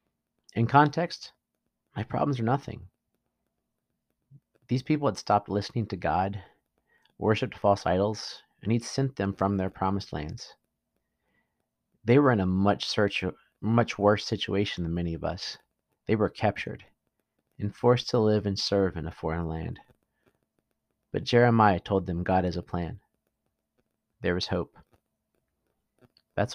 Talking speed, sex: 140 wpm, male